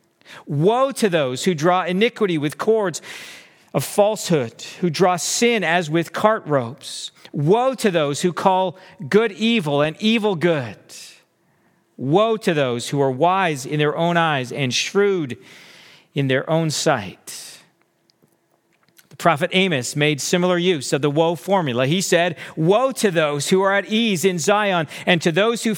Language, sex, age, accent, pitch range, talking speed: English, male, 50-69, American, 155-205 Hz, 160 wpm